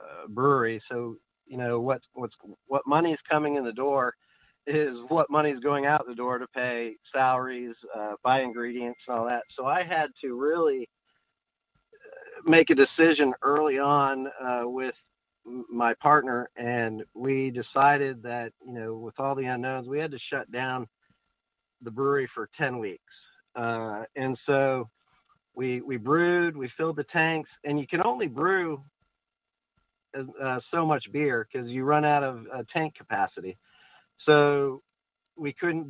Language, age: English, 50-69